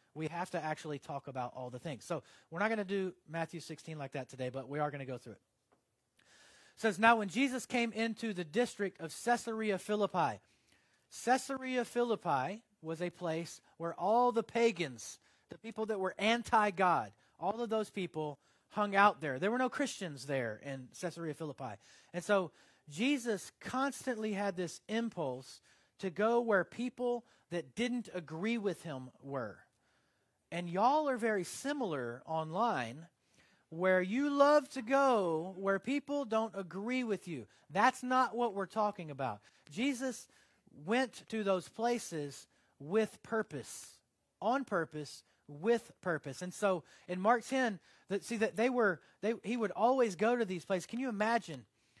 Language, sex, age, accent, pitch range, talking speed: English, male, 30-49, American, 160-235 Hz, 165 wpm